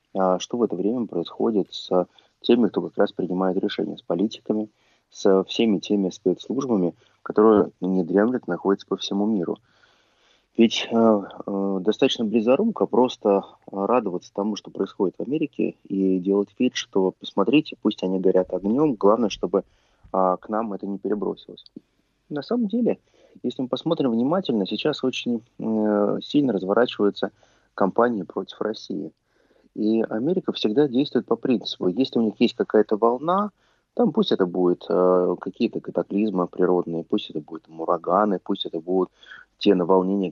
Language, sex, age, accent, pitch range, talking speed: Russian, male, 20-39, native, 95-120 Hz, 150 wpm